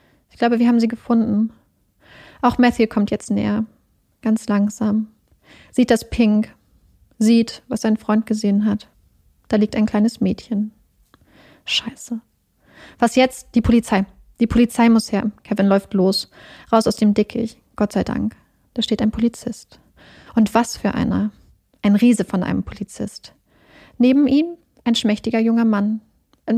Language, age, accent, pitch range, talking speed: German, 30-49, German, 210-235 Hz, 150 wpm